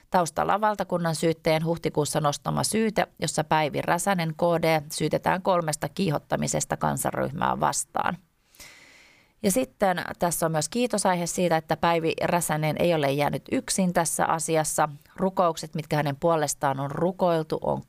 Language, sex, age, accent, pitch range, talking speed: Finnish, female, 30-49, native, 145-175 Hz, 130 wpm